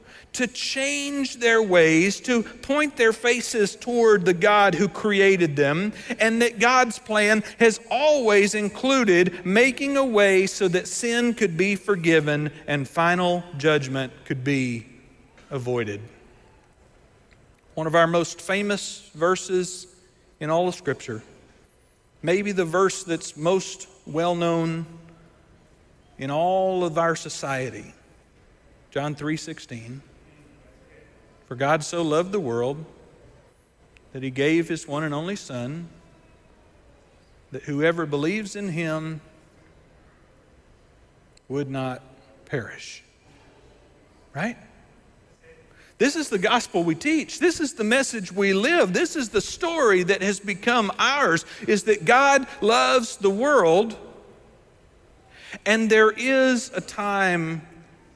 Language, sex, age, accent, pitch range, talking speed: English, male, 40-59, American, 155-220 Hz, 120 wpm